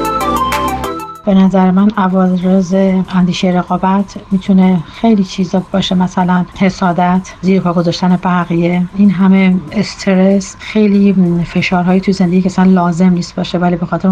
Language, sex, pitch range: Persian, female, 155-190 Hz